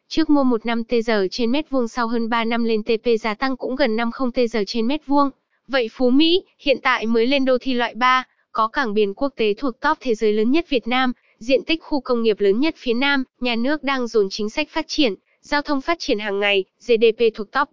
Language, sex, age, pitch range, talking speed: Vietnamese, female, 10-29, 225-275 Hz, 255 wpm